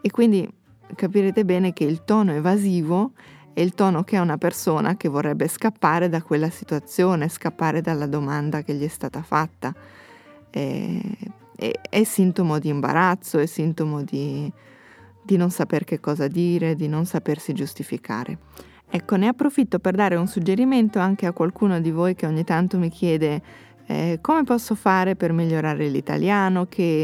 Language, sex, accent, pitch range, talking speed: Italian, female, native, 155-195 Hz, 160 wpm